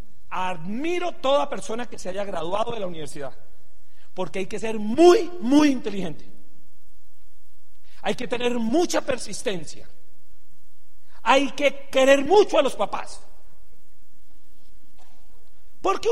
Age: 40-59